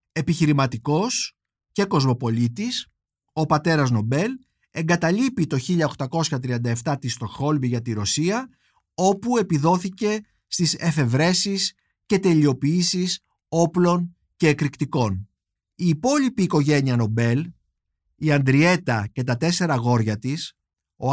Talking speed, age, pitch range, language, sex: 100 wpm, 50-69, 130-190 Hz, Greek, male